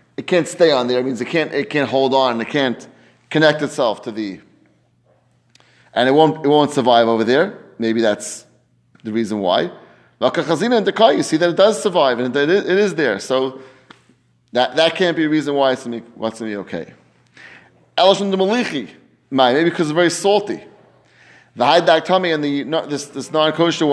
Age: 30-49